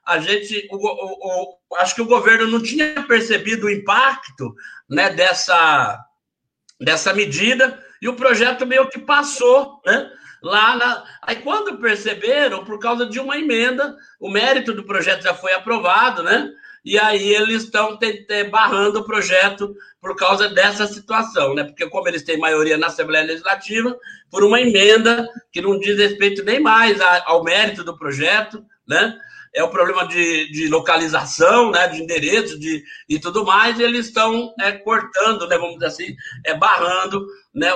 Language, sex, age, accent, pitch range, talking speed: Portuguese, male, 60-79, Brazilian, 175-230 Hz, 155 wpm